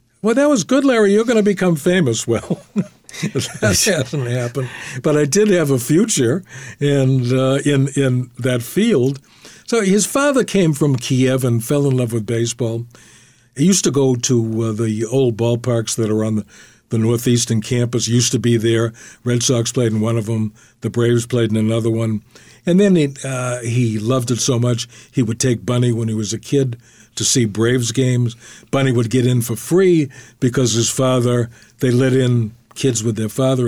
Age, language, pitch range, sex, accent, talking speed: 60-79, English, 120-145 Hz, male, American, 200 wpm